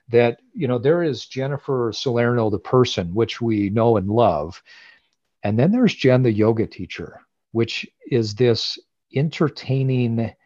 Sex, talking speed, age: male, 145 wpm, 40-59